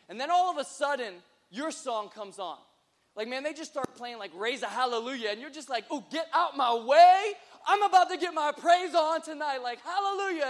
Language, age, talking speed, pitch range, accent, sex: English, 20-39, 225 wpm, 230-295 Hz, American, male